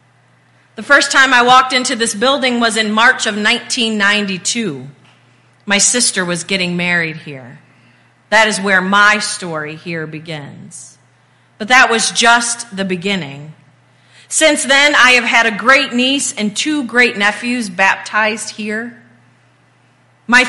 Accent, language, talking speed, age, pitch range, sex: American, English, 130 wpm, 40-59, 180-240 Hz, female